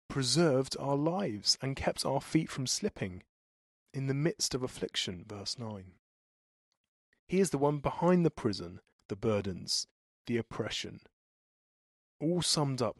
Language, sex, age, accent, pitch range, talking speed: English, male, 30-49, British, 100-135 Hz, 140 wpm